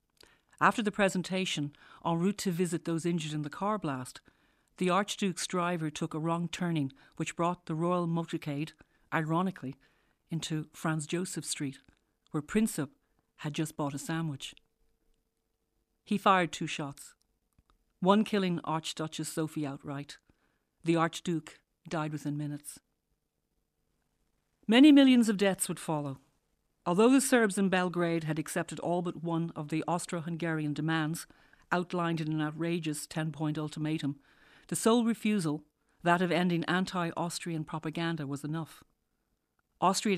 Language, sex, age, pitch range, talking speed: English, female, 50-69, 150-180 Hz, 130 wpm